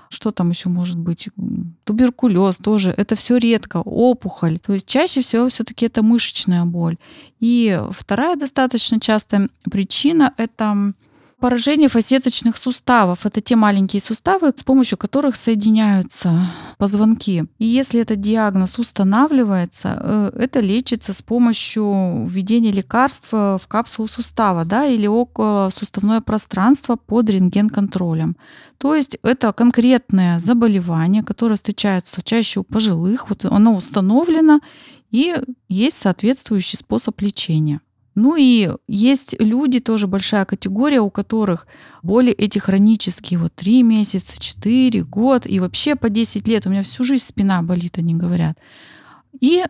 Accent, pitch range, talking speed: native, 190-245 Hz, 130 wpm